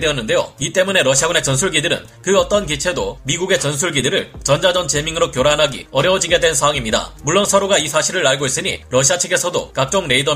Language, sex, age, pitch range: Korean, male, 30-49, 145-190 Hz